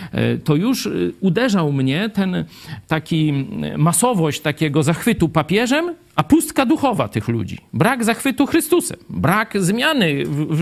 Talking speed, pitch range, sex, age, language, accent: 125 wpm, 125-200 Hz, male, 50-69, Polish, native